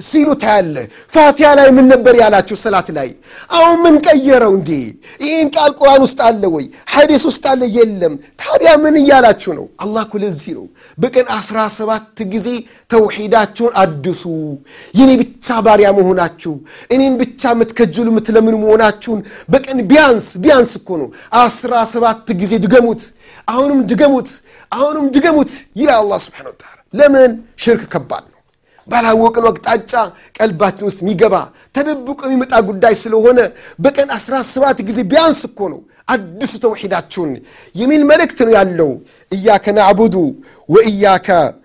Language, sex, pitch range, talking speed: Amharic, male, 210-265 Hz, 110 wpm